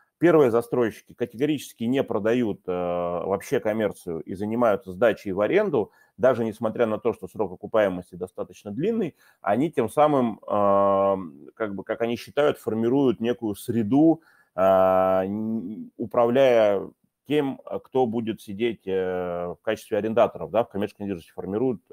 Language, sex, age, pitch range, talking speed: Russian, male, 30-49, 95-125 Hz, 135 wpm